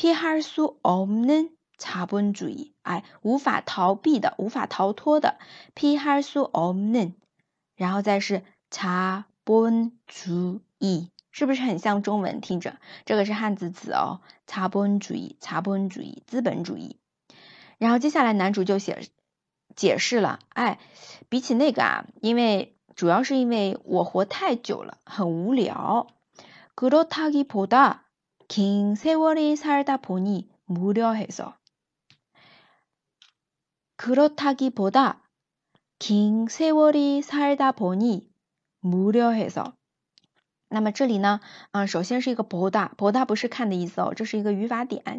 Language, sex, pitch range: Chinese, female, 195-270 Hz